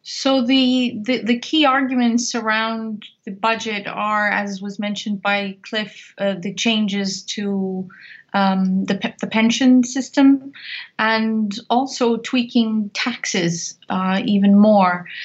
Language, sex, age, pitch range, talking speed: English, female, 30-49, 200-240 Hz, 125 wpm